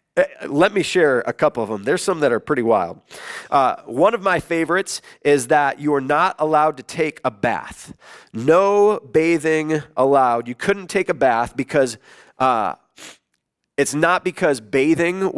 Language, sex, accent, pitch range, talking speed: English, male, American, 135-175 Hz, 165 wpm